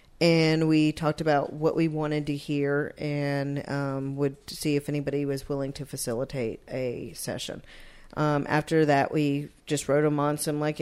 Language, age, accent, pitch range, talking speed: English, 40-59, American, 140-165 Hz, 170 wpm